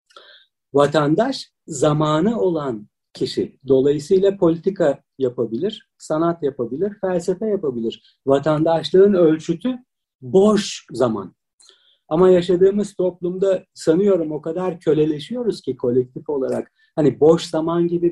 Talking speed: 95 wpm